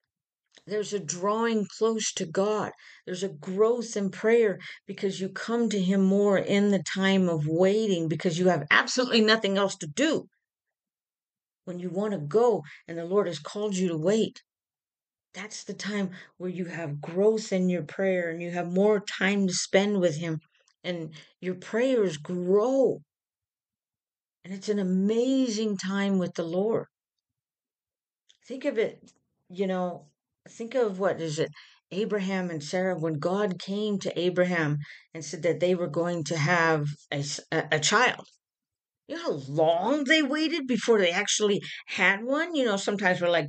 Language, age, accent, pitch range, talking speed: English, 50-69, American, 170-215 Hz, 165 wpm